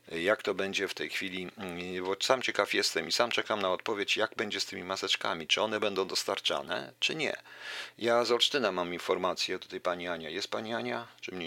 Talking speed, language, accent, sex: 205 wpm, Polish, native, male